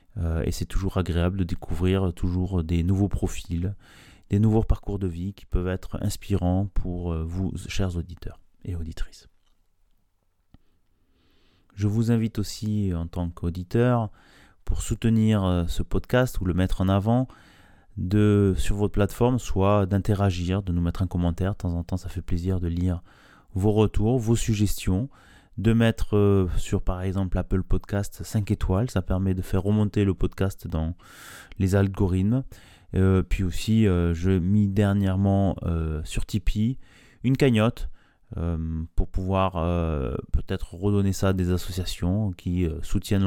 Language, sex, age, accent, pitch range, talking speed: French, male, 30-49, French, 90-105 Hz, 150 wpm